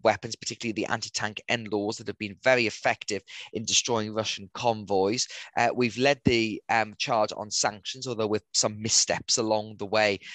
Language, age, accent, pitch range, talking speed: English, 20-39, British, 105-130 Hz, 175 wpm